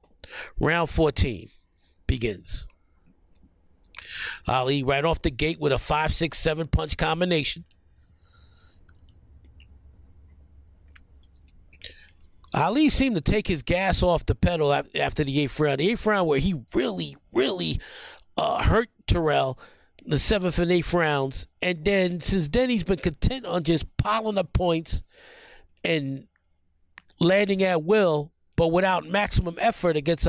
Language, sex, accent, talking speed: English, male, American, 125 wpm